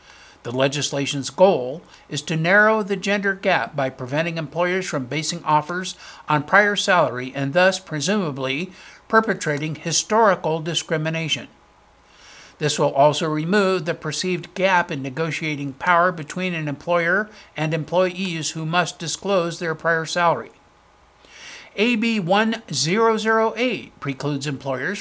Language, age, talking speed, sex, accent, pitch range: English, 60-79, 115 wpm, male, American, 145-195 Hz